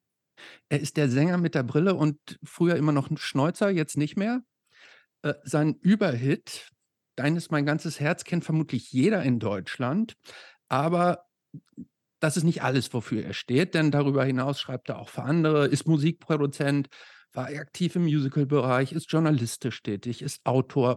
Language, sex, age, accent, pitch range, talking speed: German, male, 50-69, German, 135-165 Hz, 160 wpm